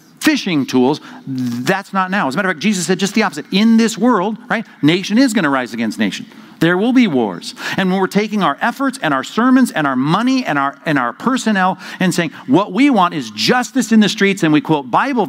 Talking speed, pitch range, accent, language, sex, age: 235 wpm, 150-210 Hz, American, English, male, 50-69